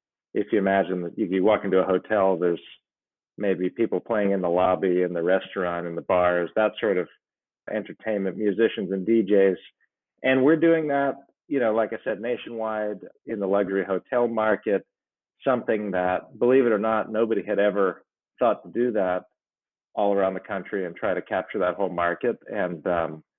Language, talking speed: English, 180 wpm